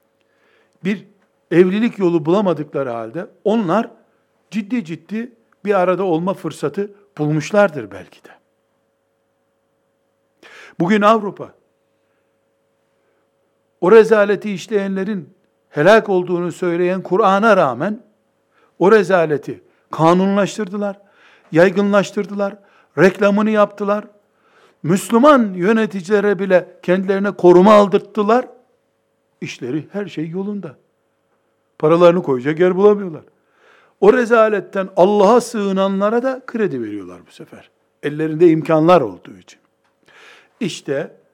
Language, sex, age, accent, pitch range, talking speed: Turkish, male, 60-79, native, 165-205 Hz, 85 wpm